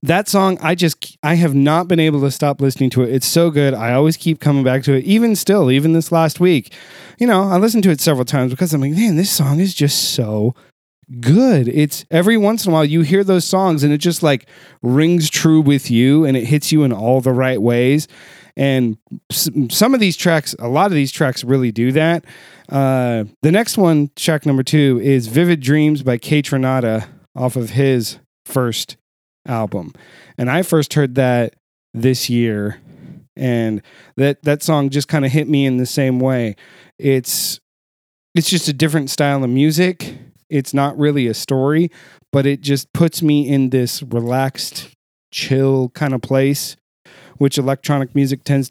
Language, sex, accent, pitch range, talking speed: English, male, American, 130-165 Hz, 190 wpm